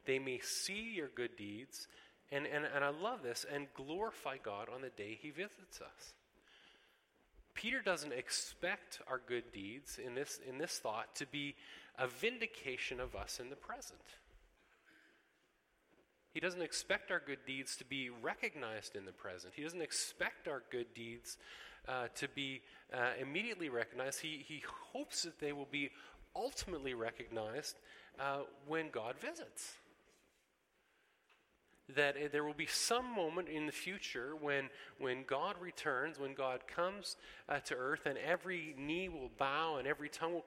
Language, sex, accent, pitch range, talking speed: English, male, American, 125-165 Hz, 160 wpm